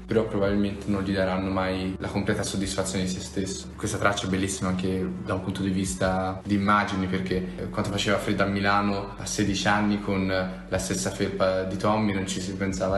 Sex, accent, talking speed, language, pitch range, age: male, native, 200 wpm, Italian, 95-105 Hz, 20-39